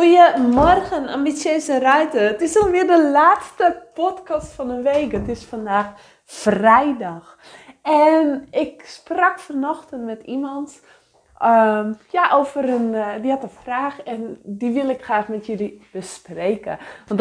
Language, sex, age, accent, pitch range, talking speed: English, female, 20-39, Dutch, 210-290 Hz, 135 wpm